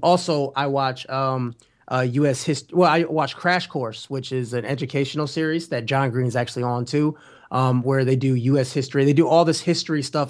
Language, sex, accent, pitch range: English, male, American, 125-150 Hz